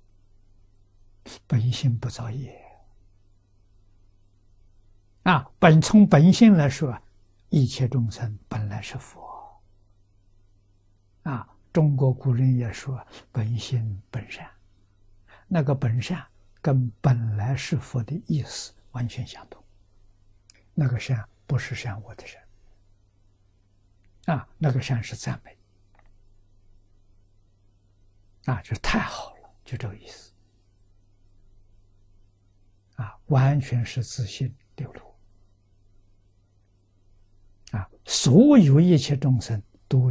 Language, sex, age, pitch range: Chinese, male, 60-79, 100-125 Hz